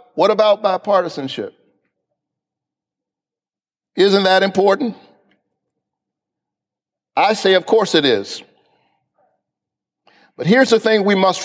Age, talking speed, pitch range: 50-69, 95 wpm, 175-210 Hz